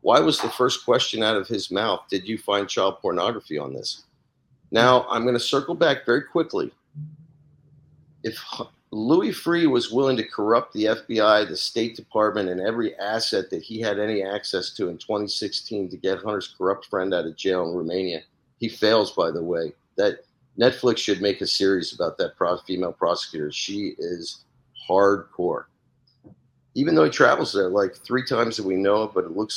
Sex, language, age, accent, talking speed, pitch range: male, English, 50-69, American, 185 wpm, 110-135 Hz